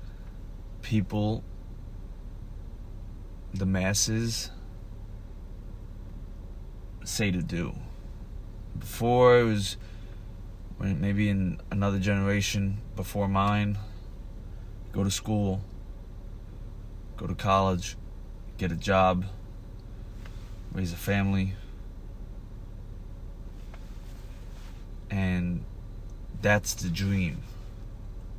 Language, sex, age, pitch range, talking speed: English, male, 30-49, 95-110 Hz, 65 wpm